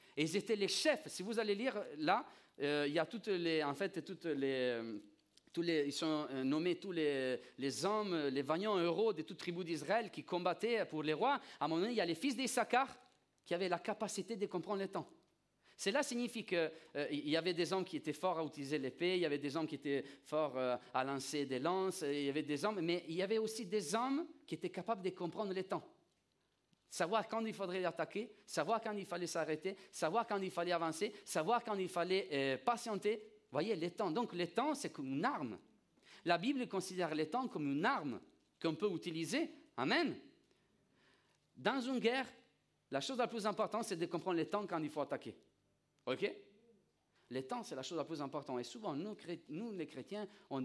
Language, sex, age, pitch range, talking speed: French, male, 40-59, 155-220 Hz, 215 wpm